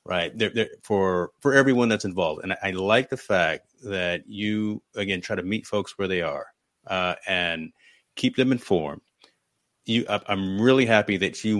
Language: English